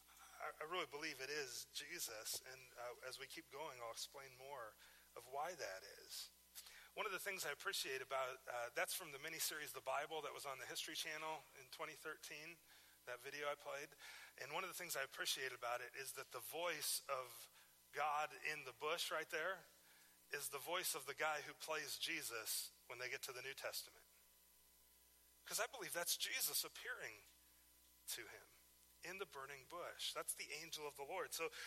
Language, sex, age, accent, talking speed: English, male, 40-59, American, 190 wpm